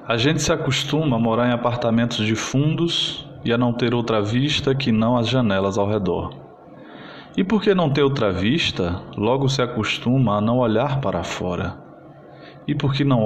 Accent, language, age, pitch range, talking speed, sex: Brazilian, Portuguese, 20-39, 115-145 Hz, 175 wpm, male